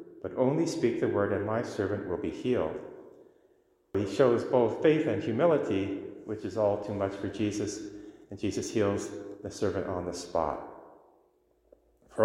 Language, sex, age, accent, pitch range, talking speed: English, male, 30-49, American, 100-145 Hz, 160 wpm